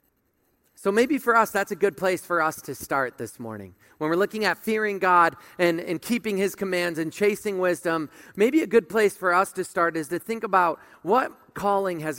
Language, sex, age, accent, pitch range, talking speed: English, male, 40-59, American, 155-200 Hz, 210 wpm